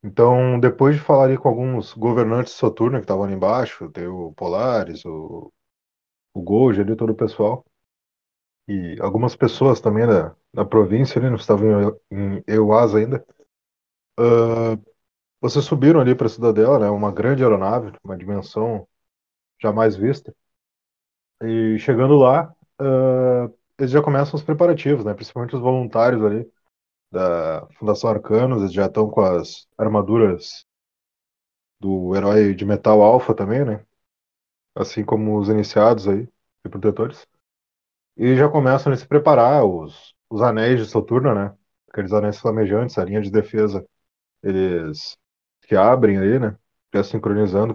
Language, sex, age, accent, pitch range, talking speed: Portuguese, male, 20-39, Brazilian, 100-125 Hz, 145 wpm